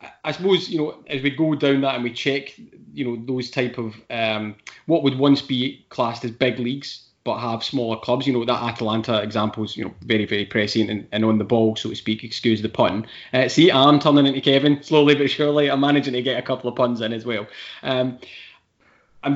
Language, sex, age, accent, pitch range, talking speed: English, male, 20-39, British, 110-135 Hz, 230 wpm